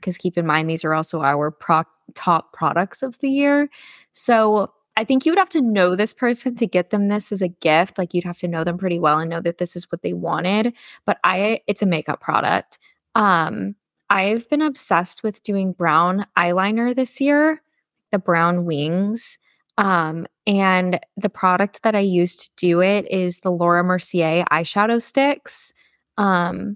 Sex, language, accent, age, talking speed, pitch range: female, English, American, 10-29, 185 wpm, 170-205 Hz